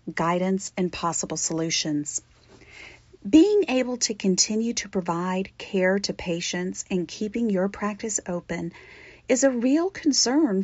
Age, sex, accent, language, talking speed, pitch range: 40-59, female, American, English, 125 wpm, 185-245 Hz